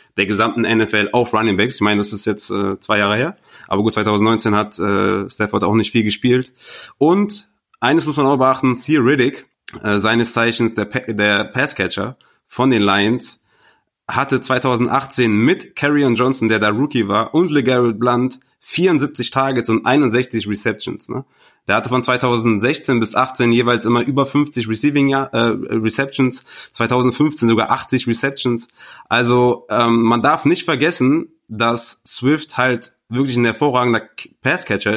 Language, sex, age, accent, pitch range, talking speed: German, male, 30-49, German, 115-135 Hz, 155 wpm